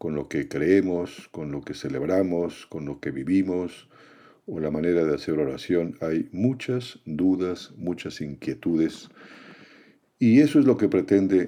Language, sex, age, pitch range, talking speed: Spanish, male, 50-69, 85-110 Hz, 150 wpm